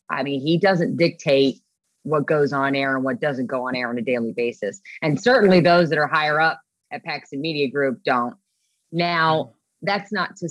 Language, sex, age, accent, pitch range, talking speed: English, female, 30-49, American, 135-165 Hz, 200 wpm